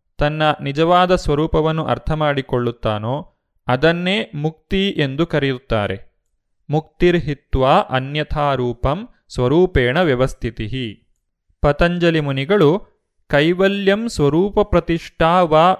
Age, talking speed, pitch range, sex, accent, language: 30-49, 75 wpm, 135-170 Hz, male, native, Kannada